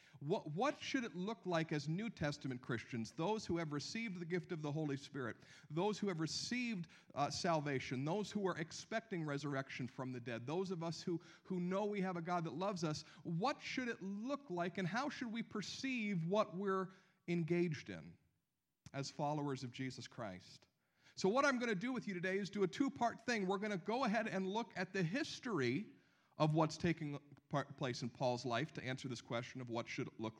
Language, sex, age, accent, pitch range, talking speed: English, male, 50-69, American, 140-200 Hz, 210 wpm